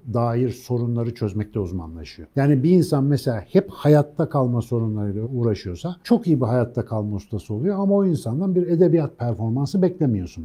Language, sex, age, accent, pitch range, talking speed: Turkish, male, 50-69, native, 110-150 Hz, 155 wpm